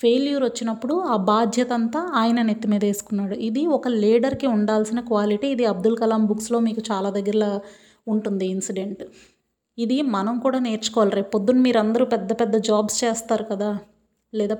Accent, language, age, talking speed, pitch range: native, Telugu, 30-49, 145 wpm, 210-240 Hz